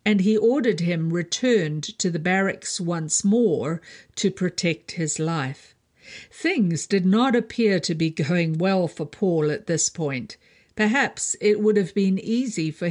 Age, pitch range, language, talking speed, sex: 50-69, 160-210 Hz, English, 160 wpm, female